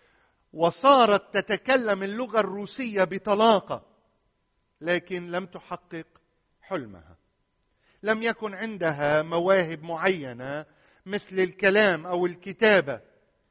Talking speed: 80 wpm